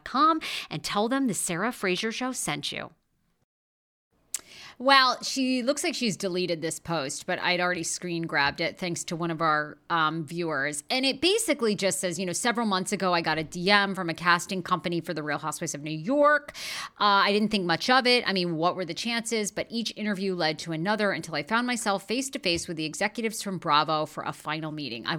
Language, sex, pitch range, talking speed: English, female, 165-225 Hz, 215 wpm